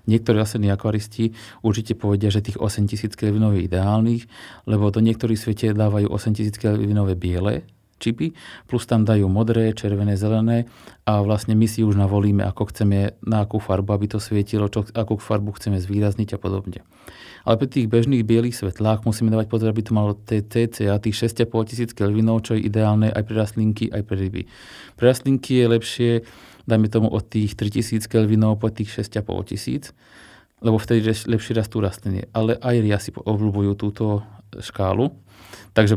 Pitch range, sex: 105-115 Hz, male